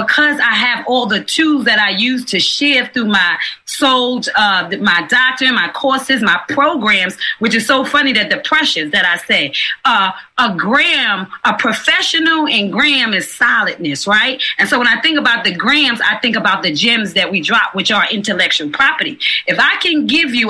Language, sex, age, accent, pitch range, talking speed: English, female, 30-49, American, 210-280 Hz, 195 wpm